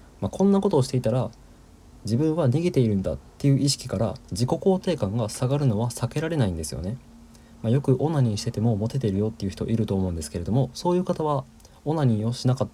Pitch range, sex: 105-140 Hz, male